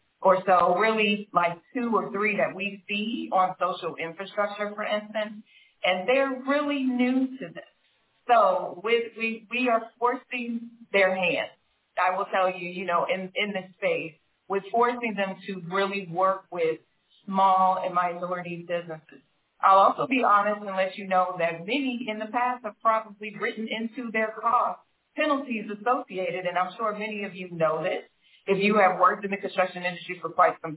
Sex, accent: female, American